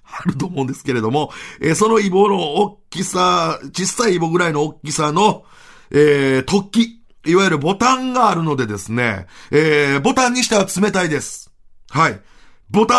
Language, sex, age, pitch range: Japanese, male, 40-59, 135-205 Hz